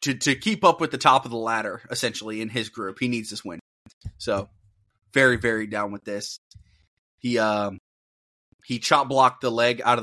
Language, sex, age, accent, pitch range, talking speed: English, male, 20-39, American, 105-130 Hz, 205 wpm